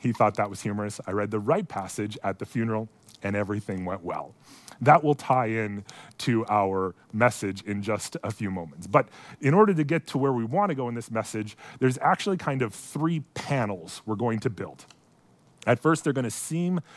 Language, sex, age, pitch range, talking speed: English, male, 30-49, 105-140 Hz, 200 wpm